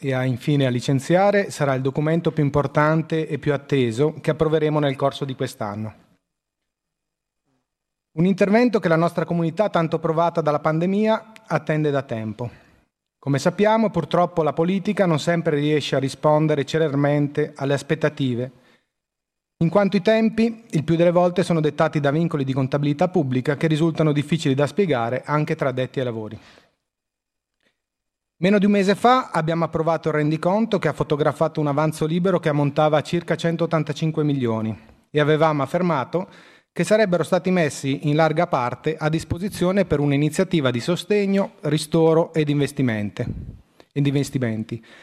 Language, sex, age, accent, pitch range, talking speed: Italian, male, 30-49, native, 140-170 Hz, 150 wpm